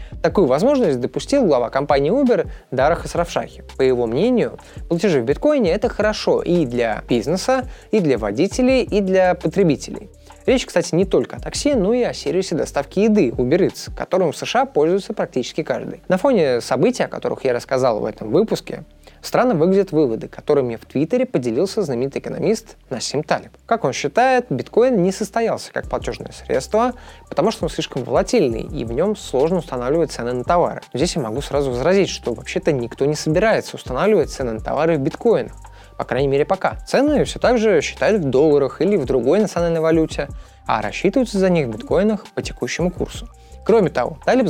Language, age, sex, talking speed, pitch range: Russian, 20-39, male, 180 wpm, 145-215 Hz